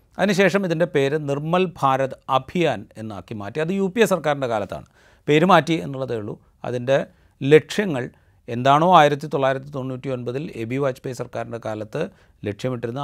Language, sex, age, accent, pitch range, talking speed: Malayalam, male, 40-59, native, 115-155 Hz, 145 wpm